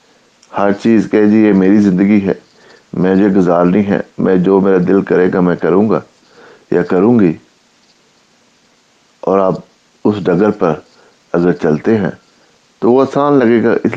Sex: male